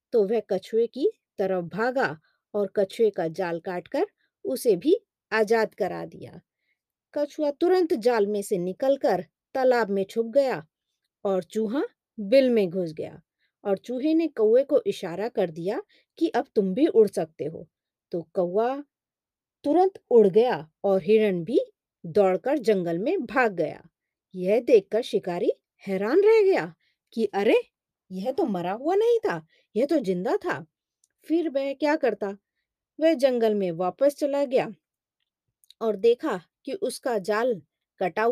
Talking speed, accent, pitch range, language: 145 wpm, native, 195-305 Hz, Hindi